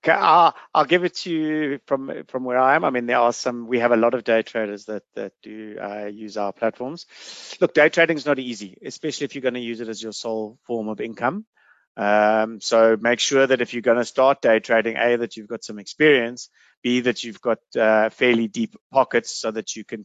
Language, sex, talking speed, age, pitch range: English, male, 235 wpm, 30-49, 115-140 Hz